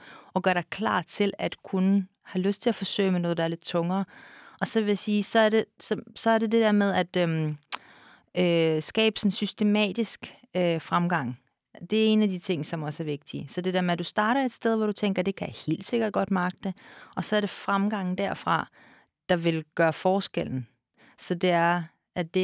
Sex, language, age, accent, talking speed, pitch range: female, Danish, 30-49, native, 225 wpm, 175-215 Hz